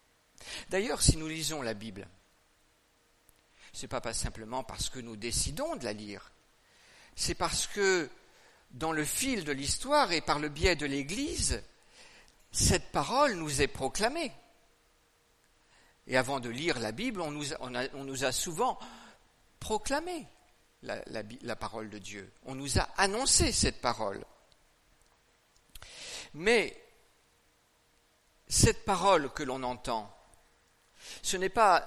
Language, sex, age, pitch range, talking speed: French, male, 50-69, 120-190 Hz, 130 wpm